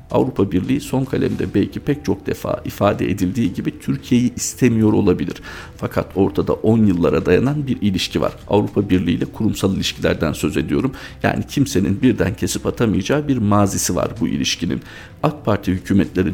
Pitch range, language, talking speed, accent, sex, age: 90-115 Hz, Turkish, 155 wpm, native, male, 50-69